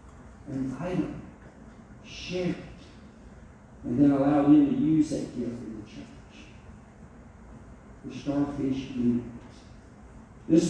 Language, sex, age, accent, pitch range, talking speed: English, male, 50-69, American, 115-145 Hz, 105 wpm